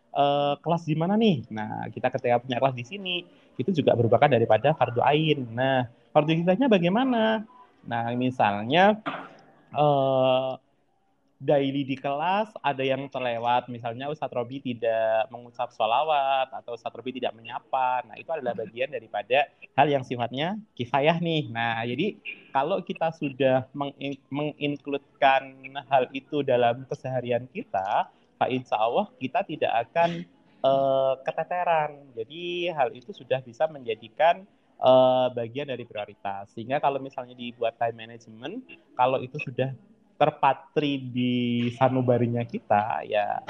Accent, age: native, 20-39